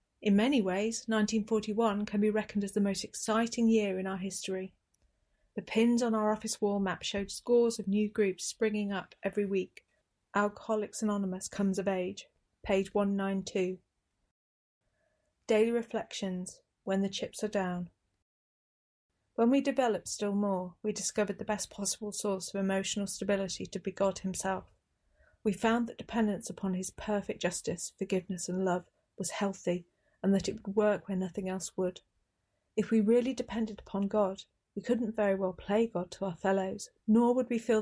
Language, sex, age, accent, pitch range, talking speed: English, female, 40-59, British, 190-220 Hz, 165 wpm